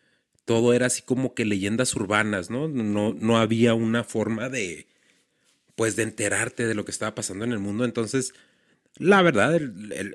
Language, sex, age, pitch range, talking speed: Spanish, male, 40-59, 95-120 Hz, 175 wpm